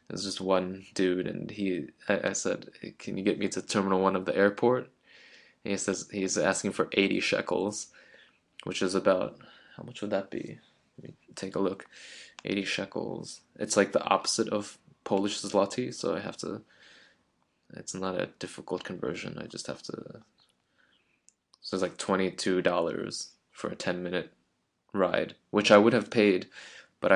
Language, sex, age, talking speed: English, male, 20-39, 170 wpm